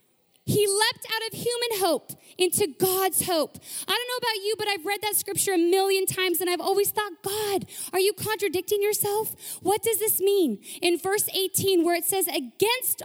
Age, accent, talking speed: 20-39, American, 195 wpm